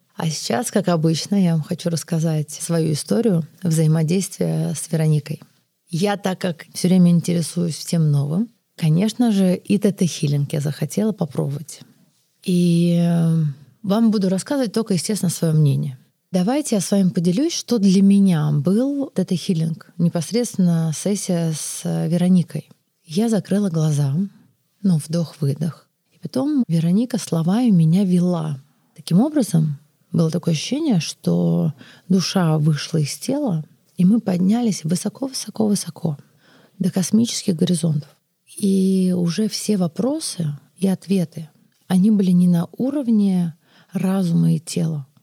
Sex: female